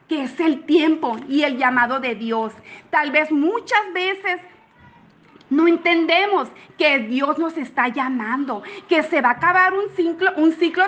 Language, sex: Spanish, female